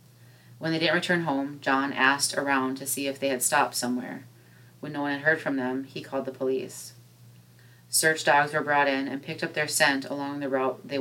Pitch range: 125-145 Hz